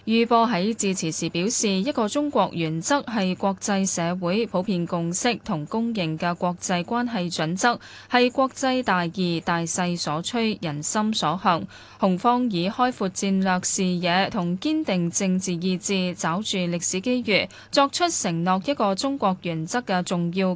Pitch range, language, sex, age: 175-230 Hz, Chinese, female, 10-29